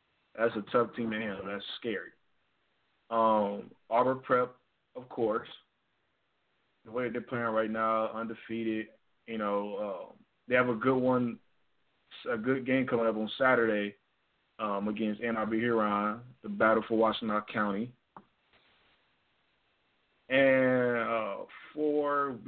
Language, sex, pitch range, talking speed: English, male, 110-130 Hz, 125 wpm